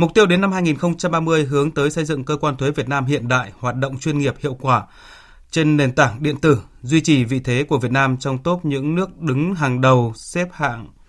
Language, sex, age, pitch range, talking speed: Vietnamese, male, 20-39, 125-155 Hz, 235 wpm